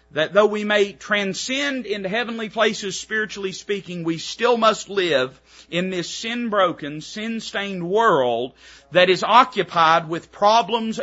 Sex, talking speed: male, 130 wpm